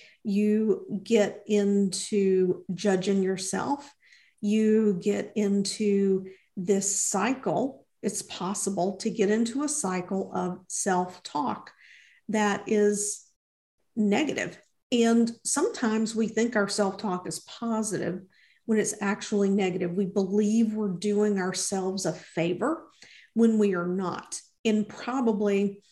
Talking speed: 110 wpm